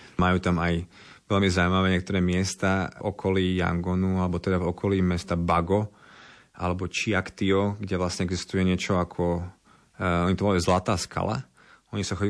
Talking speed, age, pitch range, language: 150 wpm, 30-49, 90-100 Hz, Slovak